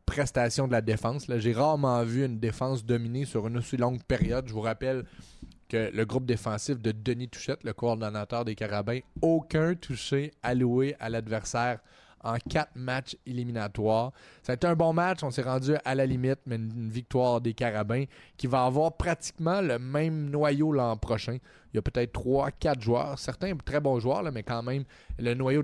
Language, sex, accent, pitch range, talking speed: French, male, Canadian, 110-130 Hz, 190 wpm